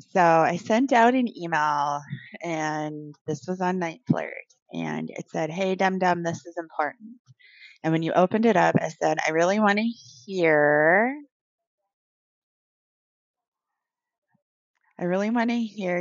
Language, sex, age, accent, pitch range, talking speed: English, female, 20-39, American, 160-190 Hz, 145 wpm